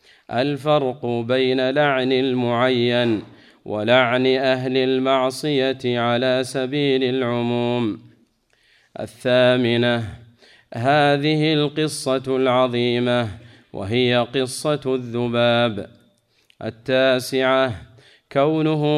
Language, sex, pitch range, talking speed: Arabic, male, 120-130 Hz, 60 wpm